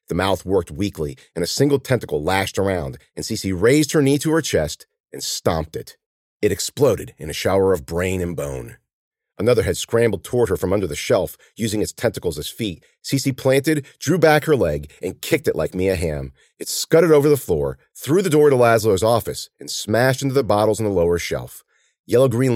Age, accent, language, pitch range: 40-59, American, English, 95-135 Hz